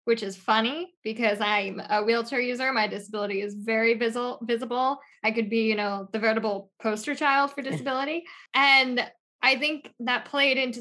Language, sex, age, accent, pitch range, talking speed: English, female, 10-29, American, 225-280 Hz, 165 wpm